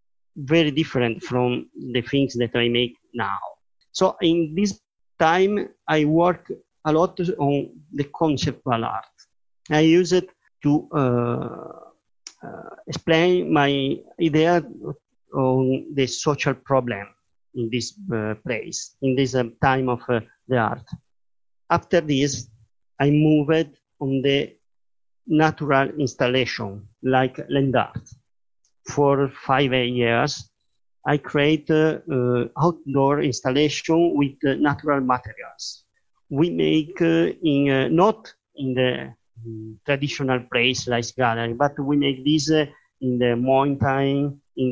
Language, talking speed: English, 125 wpm